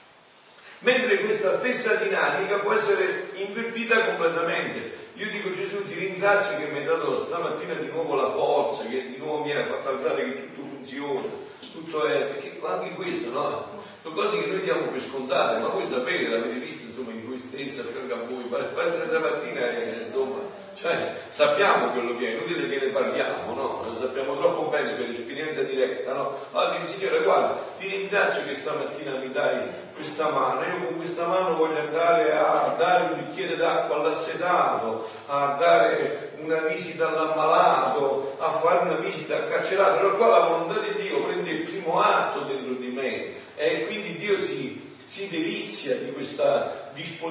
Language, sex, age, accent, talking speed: Italian, male, 40-59, native, 175 wpm